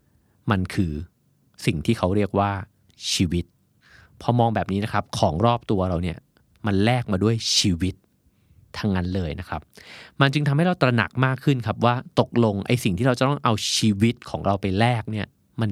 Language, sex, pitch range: Thai, male, 95-125 Hz